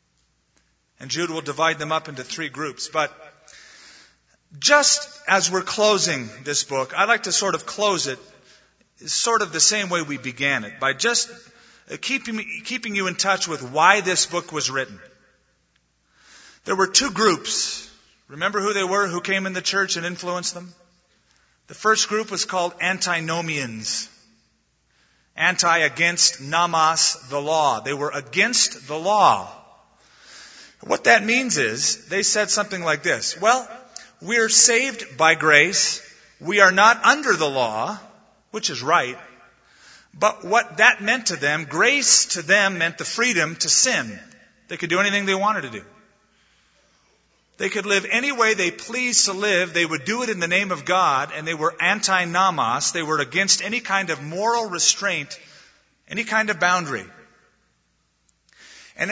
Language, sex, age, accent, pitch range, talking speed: English, male, 40-59, American, 155-210 Hz, 160 wpm